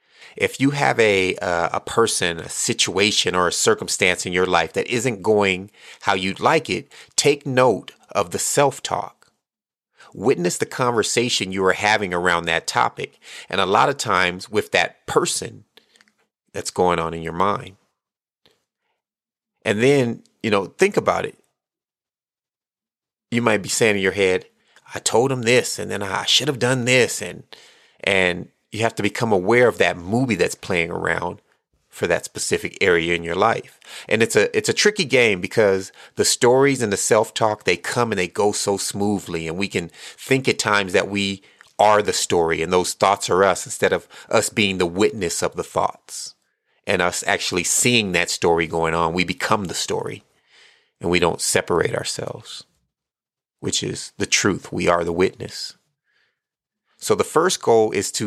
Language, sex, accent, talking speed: English, male, American, 175 wpm